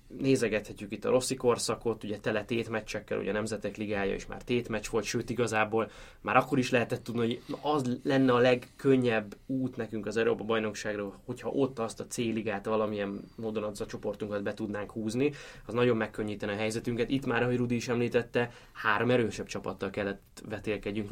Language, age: Hungarian, 20-39